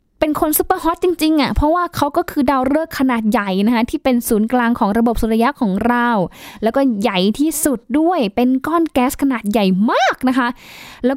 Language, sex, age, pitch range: Thai, female, 10-29, 205-265 Hz